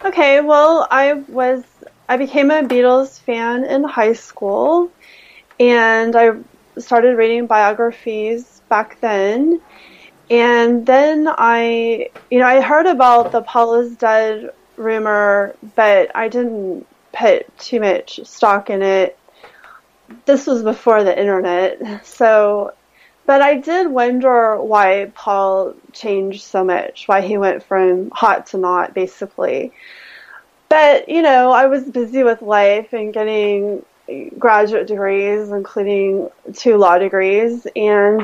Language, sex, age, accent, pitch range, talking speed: English, female, 30-49, American, 210-255 Hz, 125 wpm